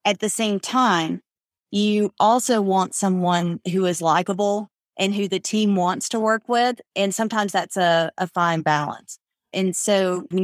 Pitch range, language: 180-215 Hz, English